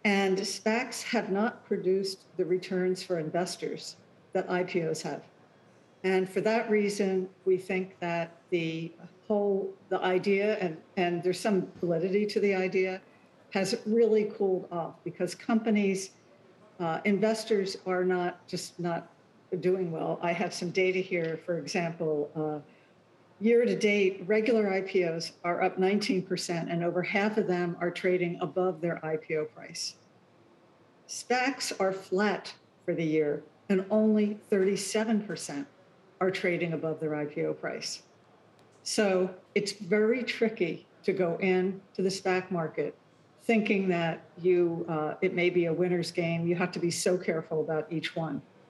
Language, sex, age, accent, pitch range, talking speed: English, female, 60-79, American, 170-195 Hz, 145 wpm